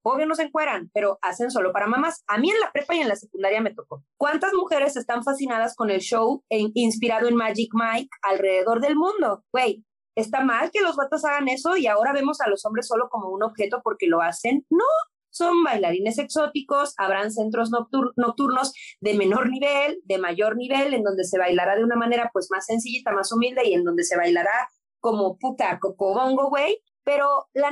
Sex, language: female, Spanish